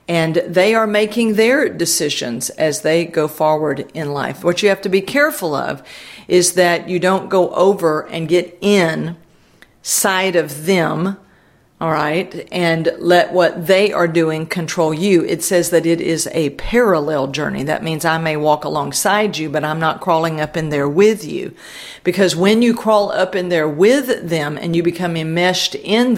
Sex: female